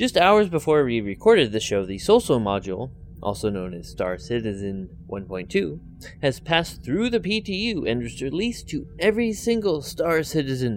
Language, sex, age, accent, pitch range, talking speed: English, male, 20-39, American, 95-150 Hz, 160 wpm